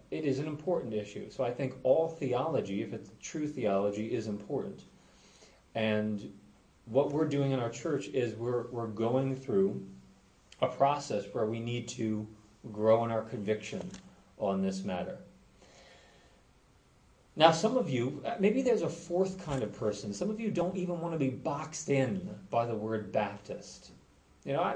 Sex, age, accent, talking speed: male, 40-59, American, 165 wpm